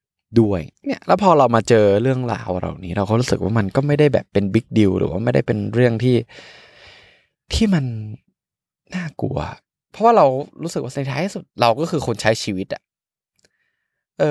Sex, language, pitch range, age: male, Thai, 95-125 Hz, 20-39